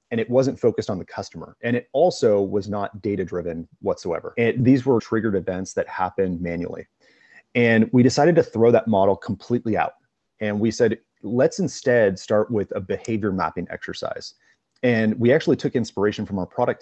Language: English